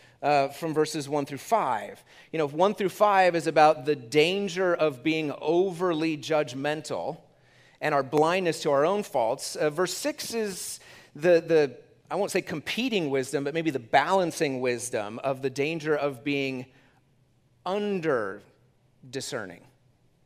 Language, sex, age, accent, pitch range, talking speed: English, male, 30-49, American, 125-160 Hz, 145 wpm